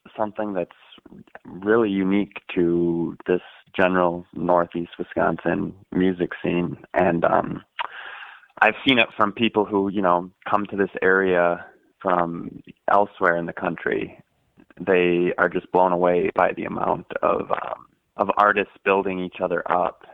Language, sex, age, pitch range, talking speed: English, male, 20-39, 85-95 Hz, 135 wpm